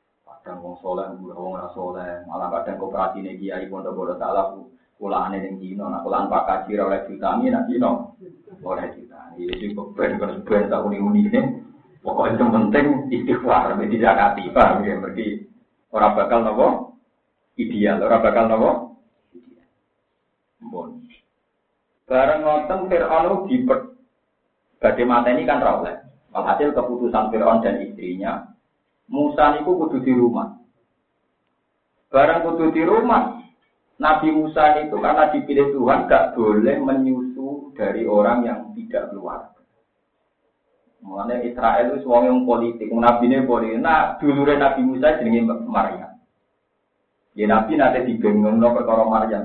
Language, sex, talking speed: Indonesian, male, 105 wpm